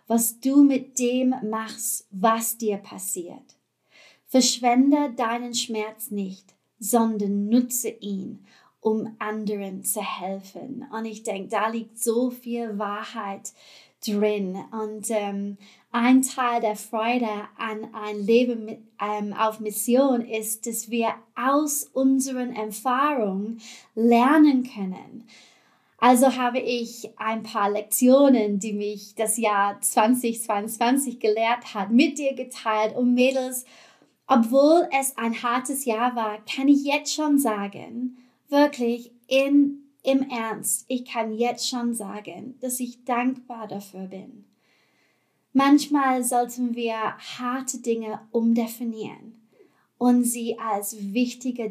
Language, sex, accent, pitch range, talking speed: German, female, German, 215-250 Hz, 115 wpm